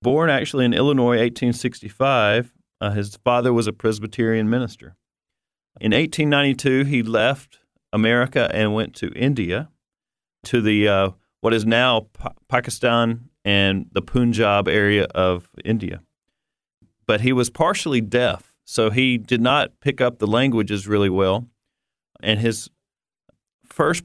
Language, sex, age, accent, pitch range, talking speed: English, male, 40-59, American, 105-125 Hz, 130 wpm